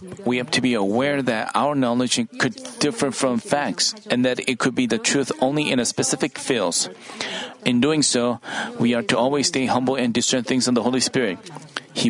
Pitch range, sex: 125-190 Hz, male